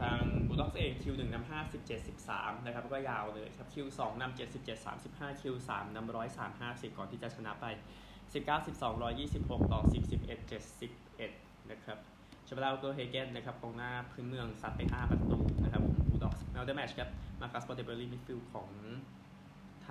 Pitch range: 105-130 Hz